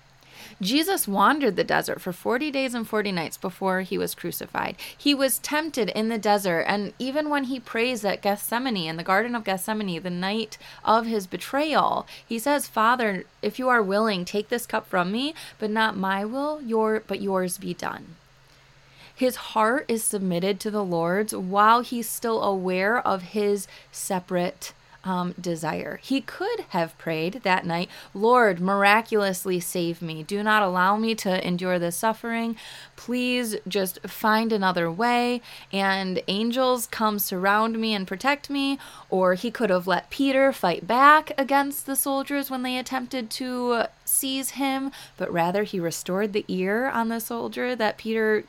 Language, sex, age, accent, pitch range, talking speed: English, female, 20-39, American, 185-245 Hz, 165 wpm